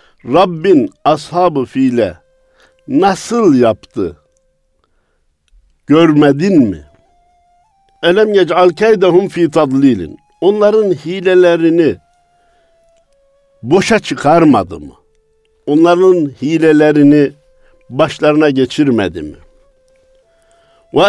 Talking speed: 65 wpm